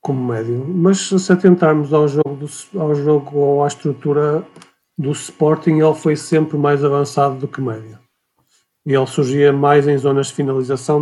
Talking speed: 160 wpm